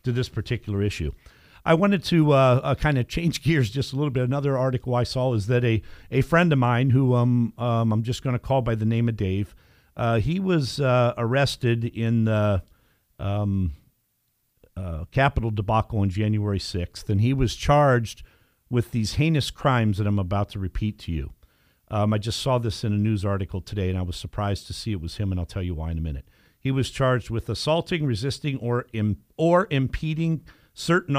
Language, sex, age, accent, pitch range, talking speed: English, male, 50-69, American, 105-135 Hz, 205 wpm